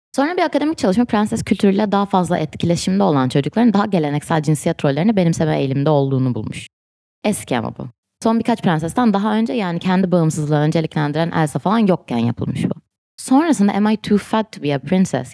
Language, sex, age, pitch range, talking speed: Turkish, female, 20-39, 150-210 Hz, 175 wpm